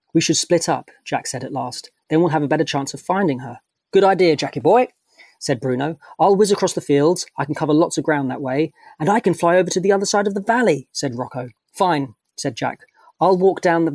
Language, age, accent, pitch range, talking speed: English, 30-49, British, 130-170 Hz, 245 wpm